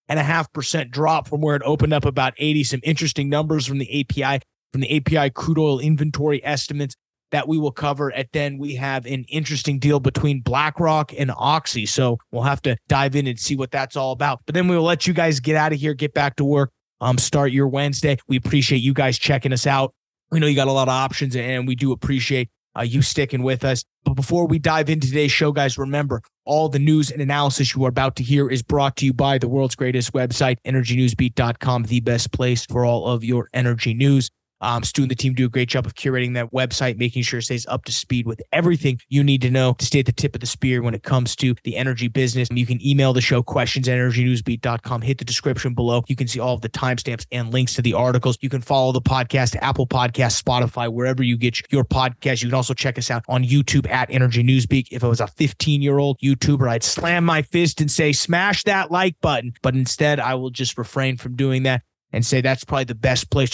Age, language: 20-39, English